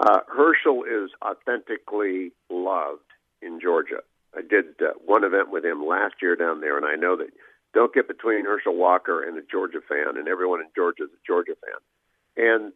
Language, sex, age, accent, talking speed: English, male, 50-69, American, 190 wpm